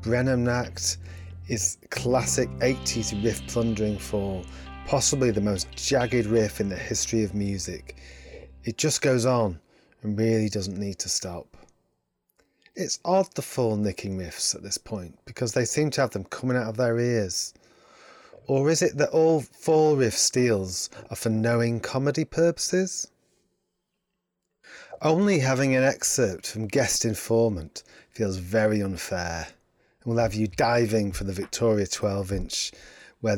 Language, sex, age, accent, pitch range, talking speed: English, male, 30-49, British, 95-125 Hz, 145 wpm